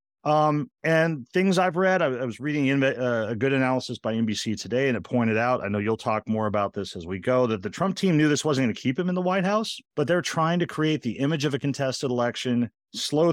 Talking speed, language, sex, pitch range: 260 wpm, English, male, 105-135 Hz